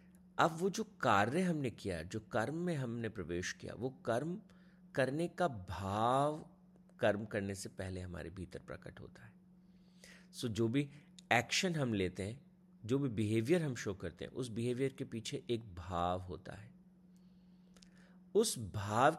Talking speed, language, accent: 160 wpm, Hindi, native